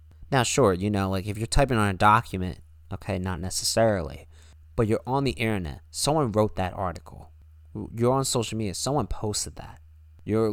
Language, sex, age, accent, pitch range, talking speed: English, male, 20-39, American, 80-115 Hz, 175 wpm